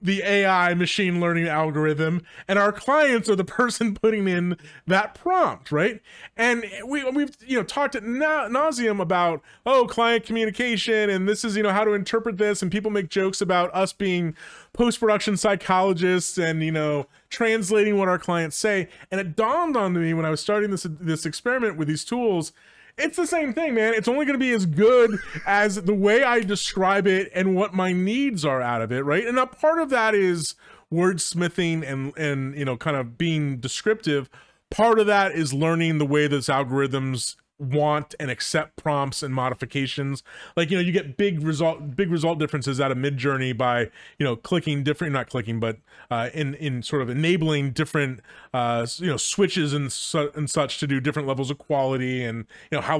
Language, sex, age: English, male, 30-49